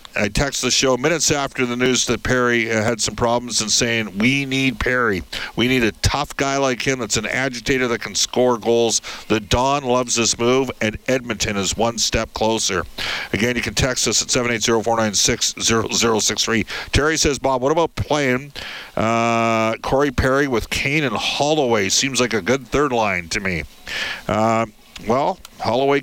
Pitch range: 115-135 Hz